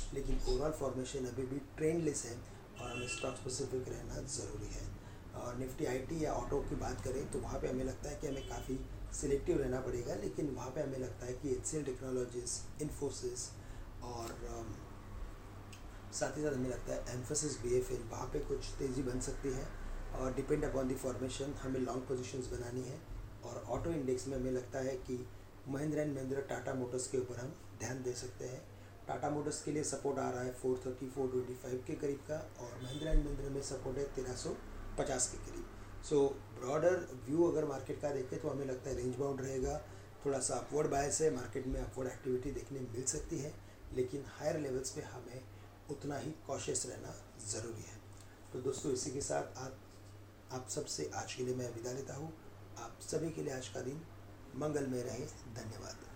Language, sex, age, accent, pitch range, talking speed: English, male, 30-49, Indian, 110-135 Hz, 135 wpm